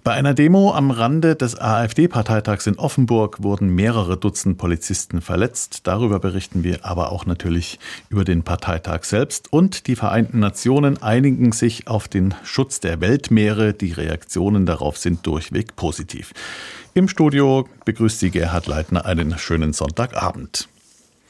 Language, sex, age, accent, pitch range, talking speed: German, male, 50-69, German, 90-125 Hz, 140 wpm